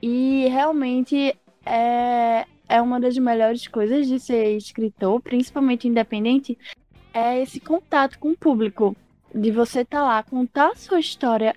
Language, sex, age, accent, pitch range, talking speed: Portuguese, female, 10-29, Brazilian, 235-290 Hz, 140 wpm